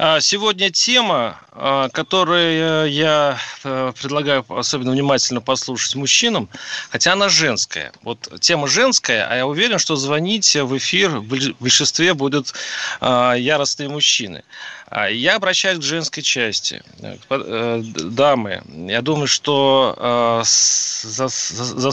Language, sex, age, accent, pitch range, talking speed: Russian, male, 30-49, native, 120-155 Hz, 100 wpm